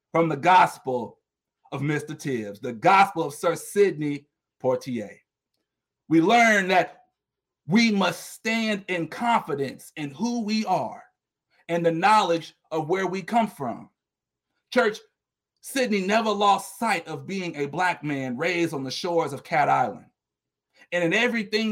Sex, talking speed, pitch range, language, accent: male, 145 wpm, 170-220 Hz, English, American